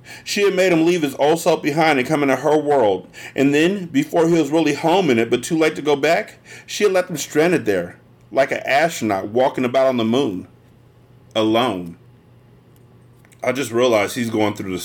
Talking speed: 205 wpm